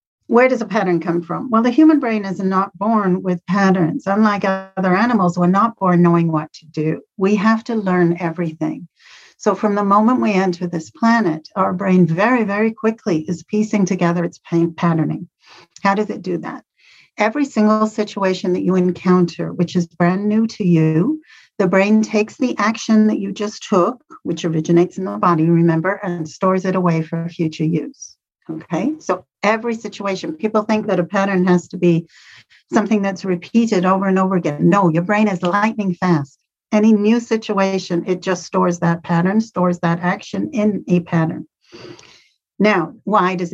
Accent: American